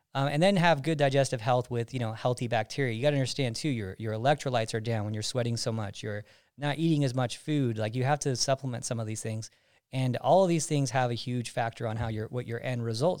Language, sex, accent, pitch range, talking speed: English, male, American, 115-140 Hz, 265 wpm